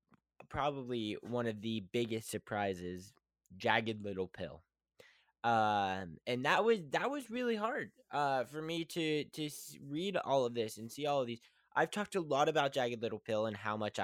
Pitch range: 100-130 Hz